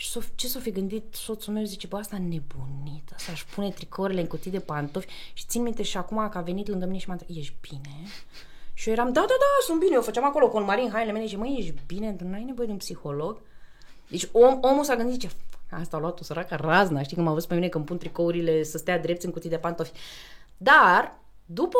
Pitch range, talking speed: 170-235 Hz, 250 wpm